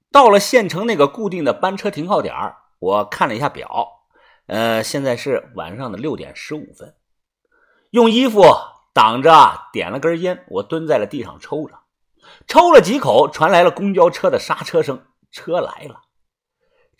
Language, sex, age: Chinese, male, 50-69